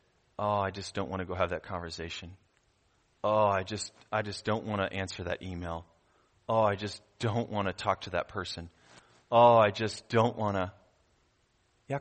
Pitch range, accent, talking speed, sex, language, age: 110-145 Hz, American, 190 wpm, male, English, 30-49